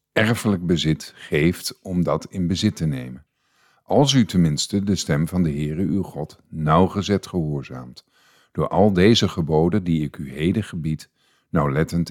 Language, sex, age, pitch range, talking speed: Dutch, male, 50-69, 85-115 Hz, 155 wpm